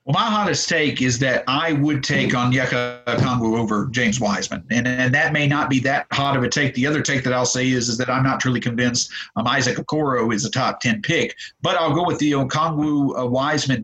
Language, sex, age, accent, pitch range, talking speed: English, male, 50-69, American, 130-165 Hz, 230 wpm